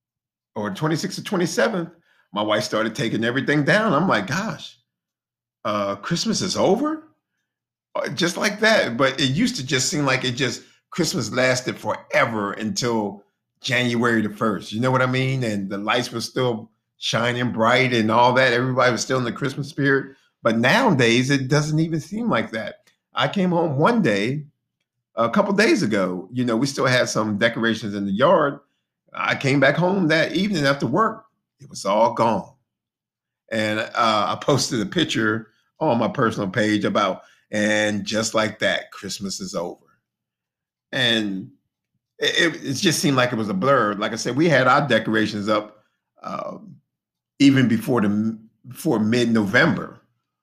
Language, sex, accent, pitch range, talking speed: English, male, American, 110-150 Hz, 170 wpm